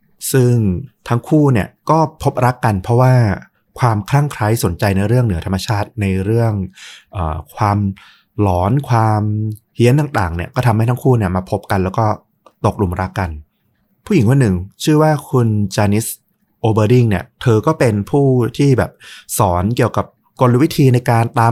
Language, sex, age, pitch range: Thai, male, 20-39, 95-125 Hz